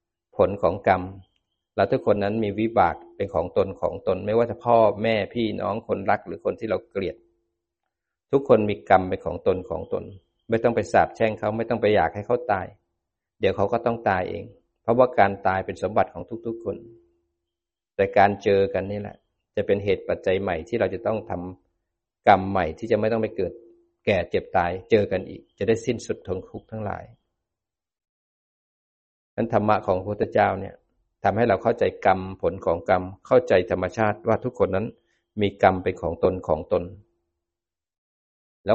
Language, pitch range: Thai, 90-115 Hz